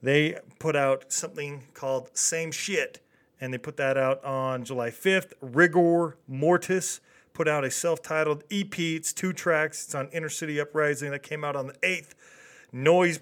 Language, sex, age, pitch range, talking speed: English, male, 40-59, 135-165 Hz, 170 wpm